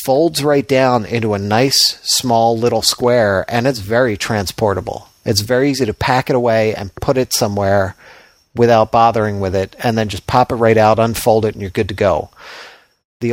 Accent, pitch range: American, 105-125 Hz